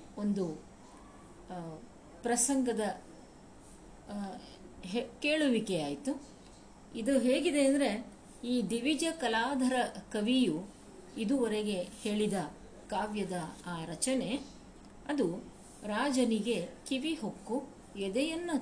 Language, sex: Kannada, female